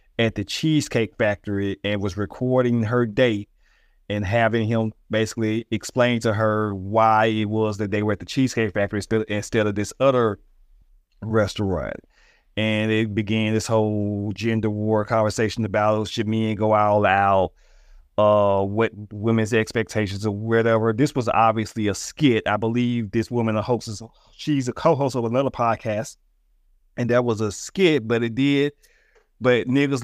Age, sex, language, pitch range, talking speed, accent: 30-49, male, English, 105-135 Hz, 155 wpm, American